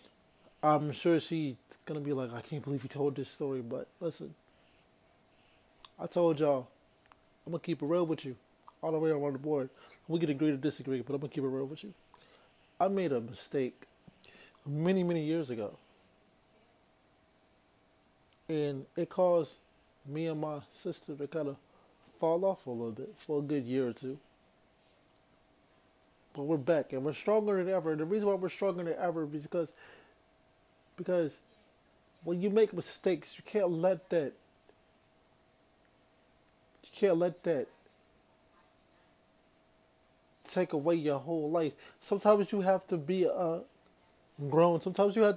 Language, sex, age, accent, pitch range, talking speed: English, male, 20-39, American, 140-180 Hz, 160 wpm